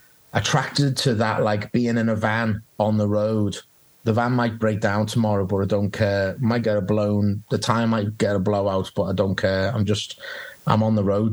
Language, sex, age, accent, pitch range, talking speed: English, male, 30-49, British, 100-115 Hz, 215 wpm